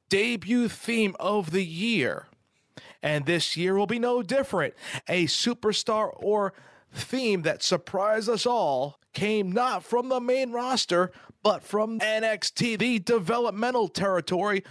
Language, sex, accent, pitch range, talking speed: English, male, American, 150-215 Hz, 130 wpm